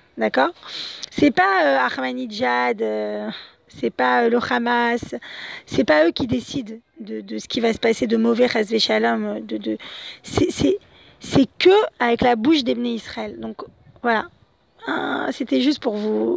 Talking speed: 160 wpm